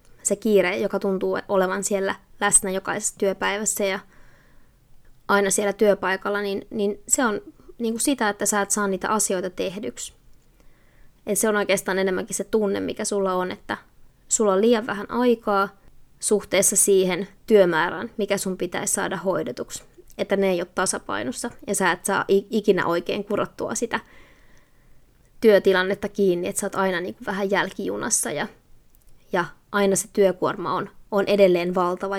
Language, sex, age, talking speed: Finnish, female, 20-39, 145 wpm